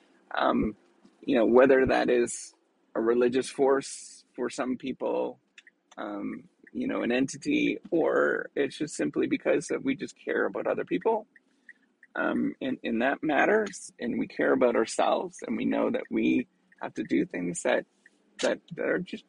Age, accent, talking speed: 30-49, American, 165 wpm